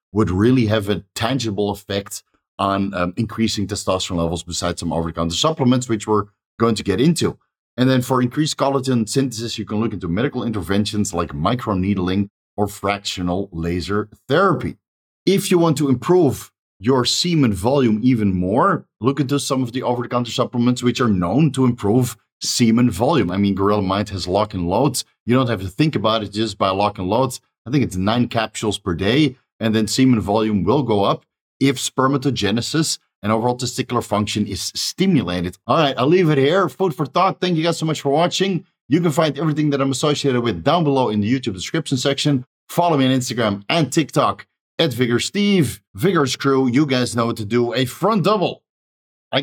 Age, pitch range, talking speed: 30-49, 105-140 Hz, 195 wpm